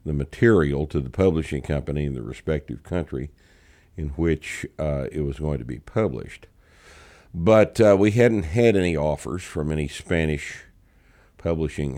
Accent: American